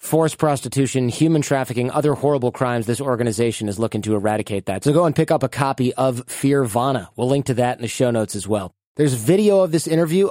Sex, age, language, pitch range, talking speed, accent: male, 30-49, English, 120-145 Hz, 220 wpm, American